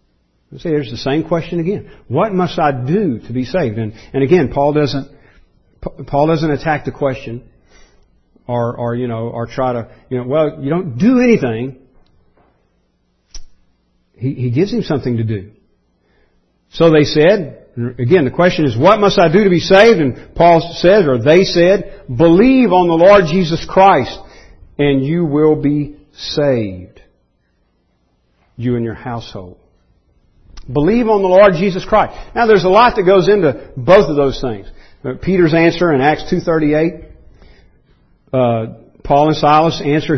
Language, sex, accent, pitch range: English, male, American, 120-180 Hz